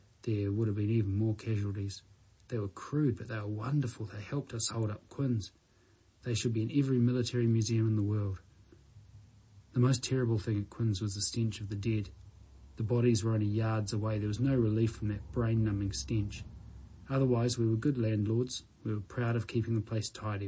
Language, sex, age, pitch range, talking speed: English, male, 30-49, 105-120 Hz, 200 wpm